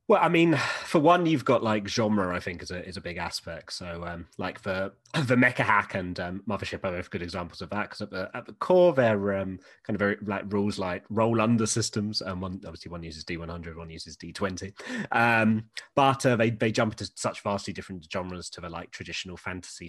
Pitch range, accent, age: 85-110 Hz, British, 30-49